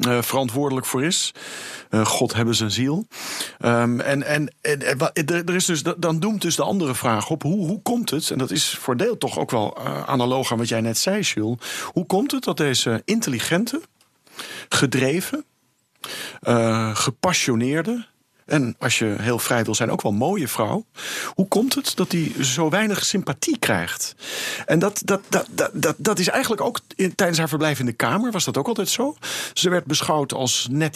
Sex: male